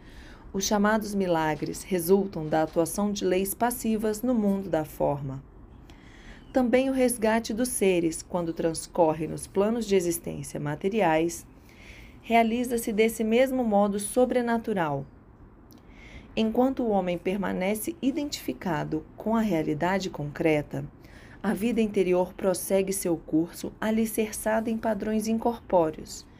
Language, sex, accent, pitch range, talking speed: Portuguese, female, Brazilian, 160-215 Hz, 110 wpm